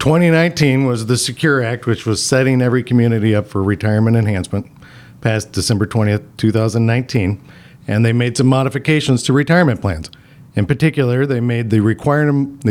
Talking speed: 145 wpm